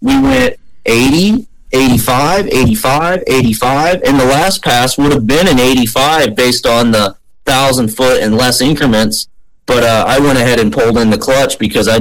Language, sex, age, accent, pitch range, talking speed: English, male, 30-49, American, 115-140 Hz, 175 wpm